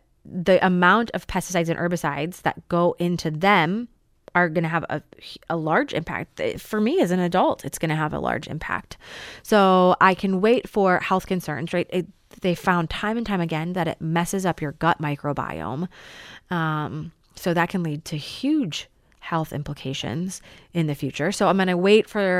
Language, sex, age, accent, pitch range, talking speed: English, female, 20-39, American, 160-190 Hz, 190 wpm